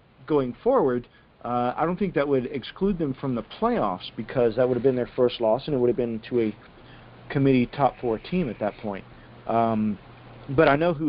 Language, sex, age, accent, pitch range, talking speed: English, male, 40-59, American, 110-130 Hz, 215 wpm